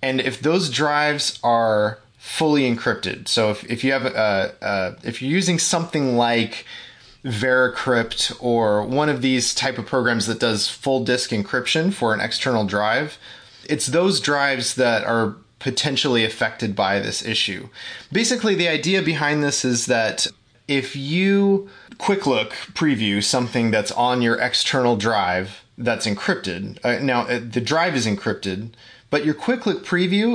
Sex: male